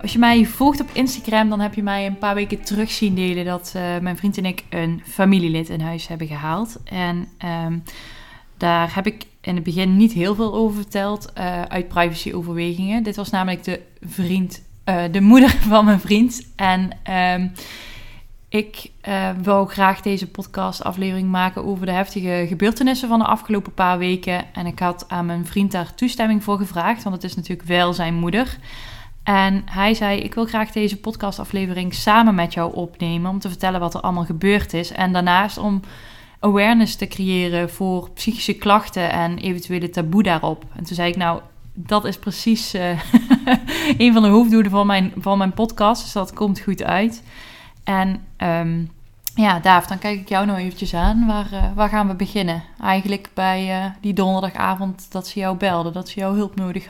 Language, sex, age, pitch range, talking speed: Dutch, female, 20-39, 175-210 Hz, 185 wpm